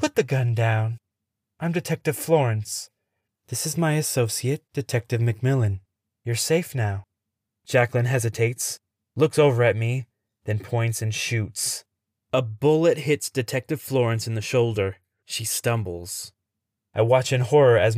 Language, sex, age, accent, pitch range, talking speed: English, male, 20-39, American, 110-130 Hz, 135 wpm